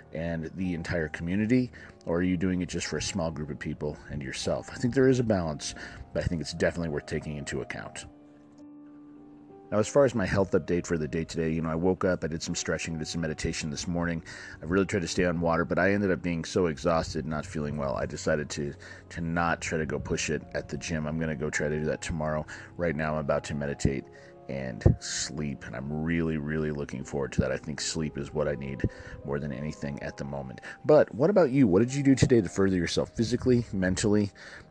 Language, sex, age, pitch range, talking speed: English, male, 30-49, 80-105 Hz, 240 wpm